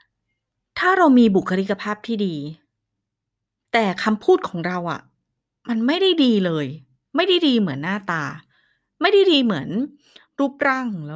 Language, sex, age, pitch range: Thai, female, 20-39, 175-270 Hz